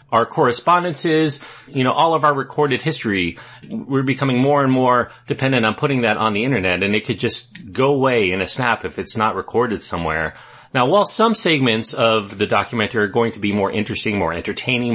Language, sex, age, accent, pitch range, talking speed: English, male, 30-49, American, 105-145 Hz, 200 wpm